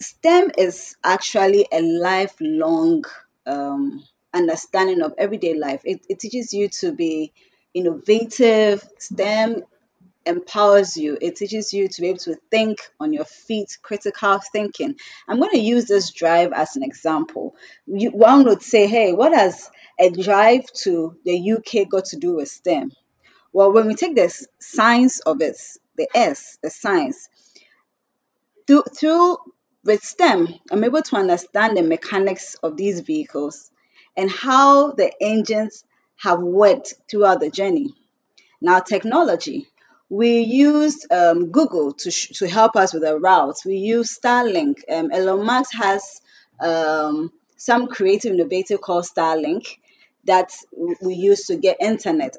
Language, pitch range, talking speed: English, 180-275 Hz, 145 wpm